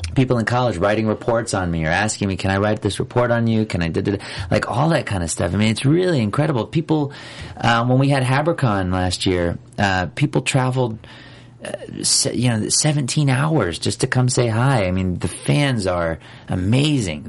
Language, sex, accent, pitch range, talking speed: English, male, American, 90-125 Hz, 205 wpm